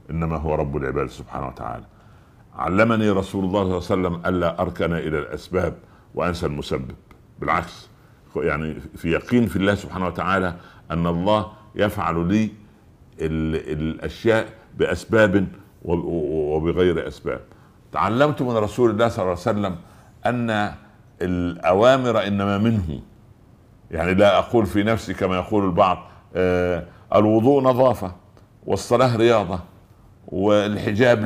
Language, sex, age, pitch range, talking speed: Arabic, male, 60-79, 90-110 Hz, 115 wpm